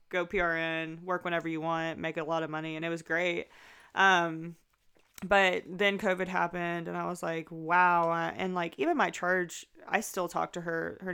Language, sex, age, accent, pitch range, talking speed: English, female, 20-39, American, 165-185 Hz, 195 wpm